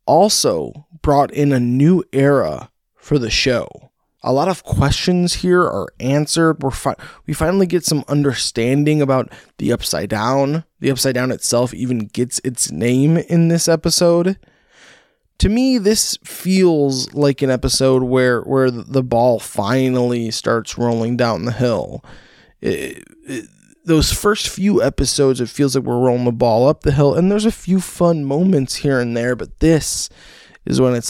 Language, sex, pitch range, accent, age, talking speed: English, male, 115-155 Hz, American, 20-39, 165 wpm